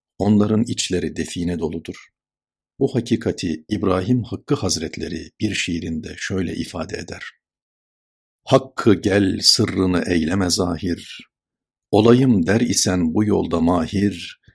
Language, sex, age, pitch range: Turkish, male, 60-79, 90-115 Hz